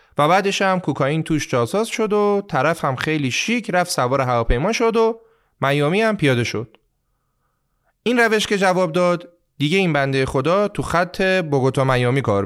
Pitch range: 130-190 Hz